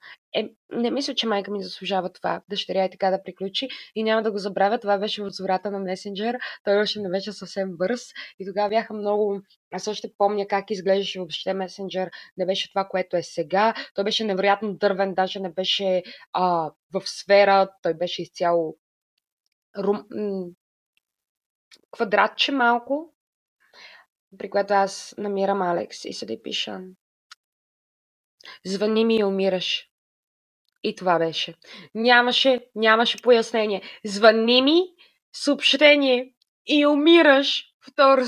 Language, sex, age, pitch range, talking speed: Bulgarian, female, 20-39, 200-285 Hz, 135 wpm